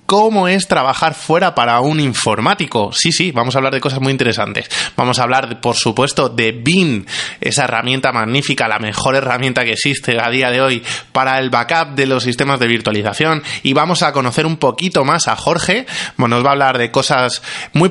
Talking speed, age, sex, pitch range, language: 200 wpm, 20-39, male, 120-165 Hz, Spanish